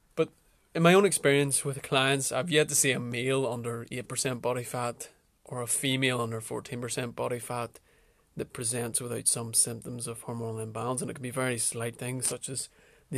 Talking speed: 185 wpm